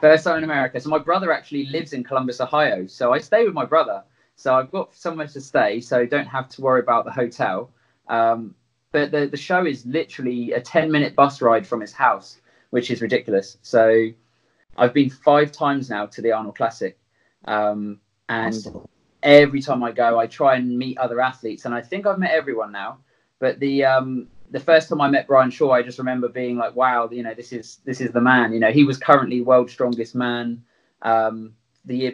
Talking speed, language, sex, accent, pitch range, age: 215 wpm, English, male, British, 115-140 Hz, 20-39